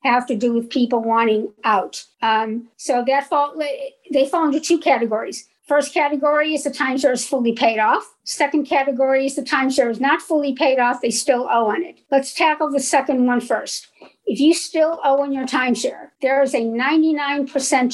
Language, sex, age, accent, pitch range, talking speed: English, female, 50-69, American, 245-295 Hz, 195 wpm